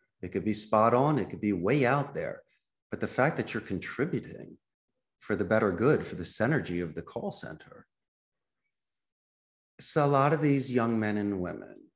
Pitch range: 95-115 Hz